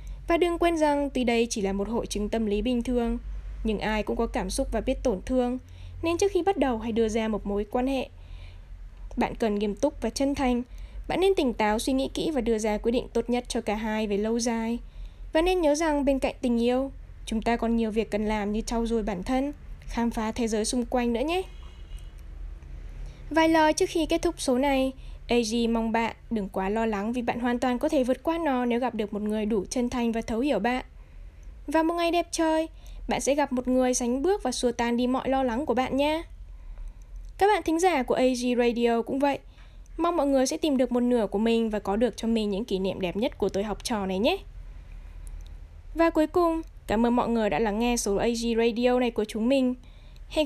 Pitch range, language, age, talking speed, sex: 215-275 Hz, Vietnamese, 10-29, 240 wpm, female